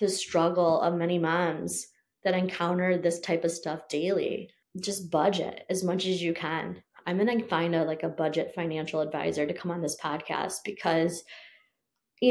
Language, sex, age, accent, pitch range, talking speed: English, female, 20-39, American, 170-195 Hz, 175 wpm